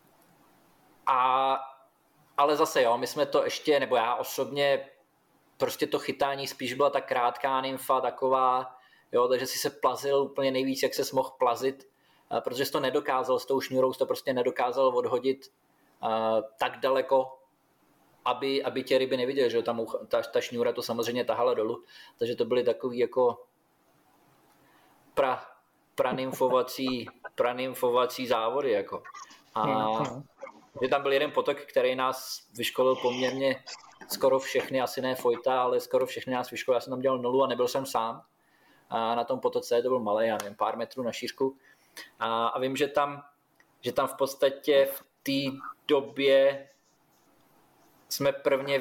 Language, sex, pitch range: Czech, male, 130-155 Hz